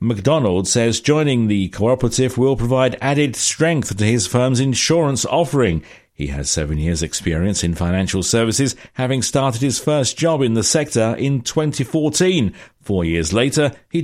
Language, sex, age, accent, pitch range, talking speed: English, male, 50-69, British, 100-140 Hz, 155 wpm